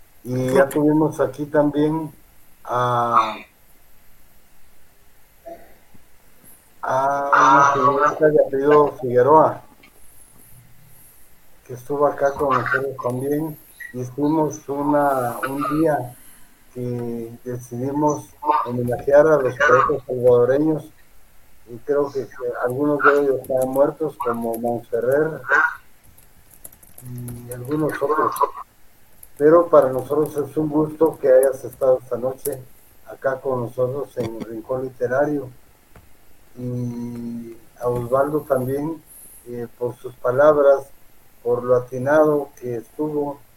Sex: male